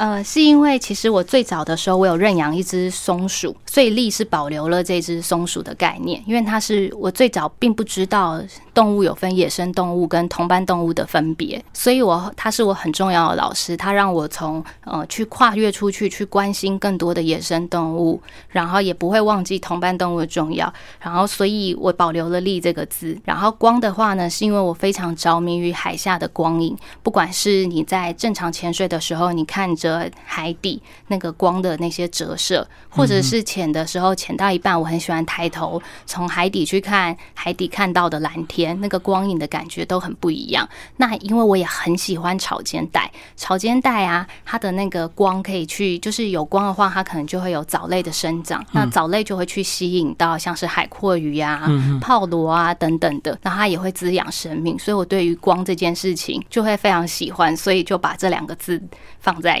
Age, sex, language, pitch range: 20-39, female, Chinese, 170-200 Hz